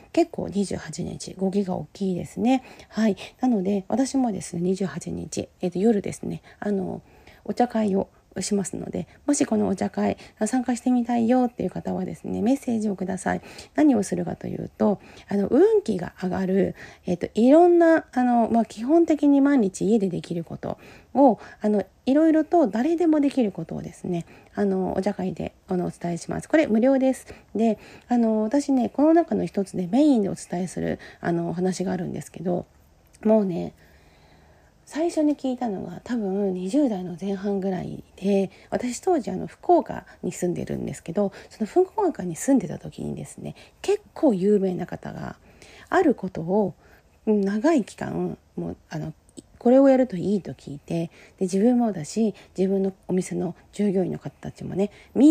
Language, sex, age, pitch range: Japanese, female, 40-59, 185-255 Hz